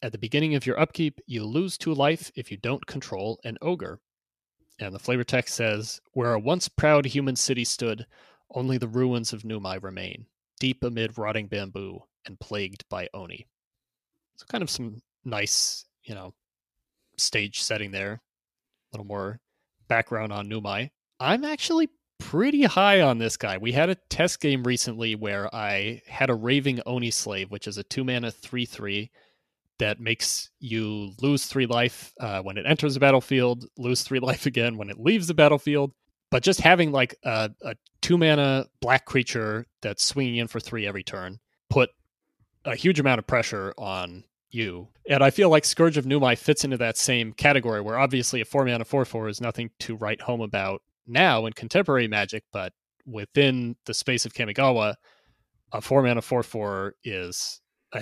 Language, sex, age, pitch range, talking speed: English, male, 30-49, 110-135 Hz, 175 wpm